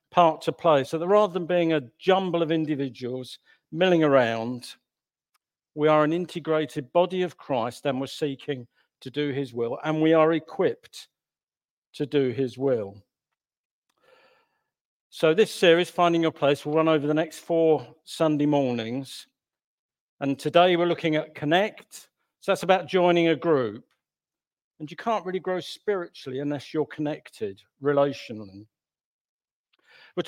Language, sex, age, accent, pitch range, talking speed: English, male, 50-69, British, 140-175 Hz, 145 wpm